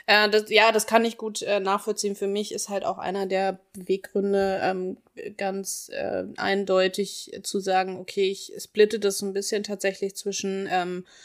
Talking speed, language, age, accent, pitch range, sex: 170 wpm, German, 20-39, German, 185-205 Hz, female